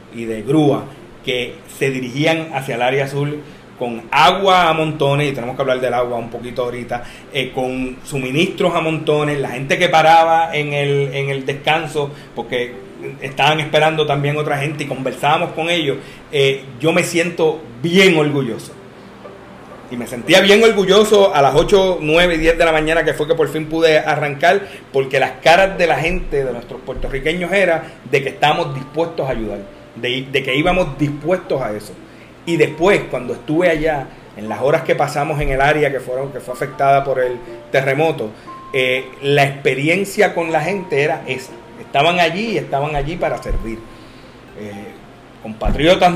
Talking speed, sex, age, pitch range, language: 175 wpm, male, 30-49, 125-165 Hz, Spanish